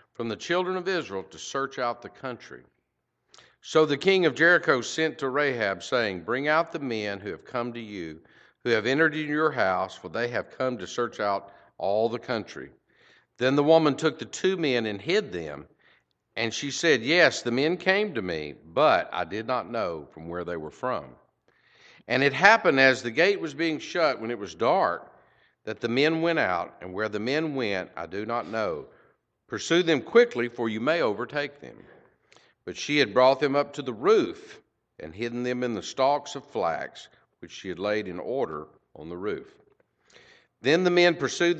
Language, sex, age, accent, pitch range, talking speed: English, male, 50-69, American, 110-160 Hz, 200 wpm